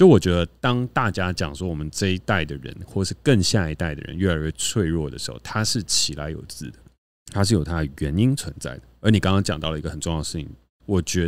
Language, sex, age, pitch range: Chinese, male, 30-49, 80-110 Hz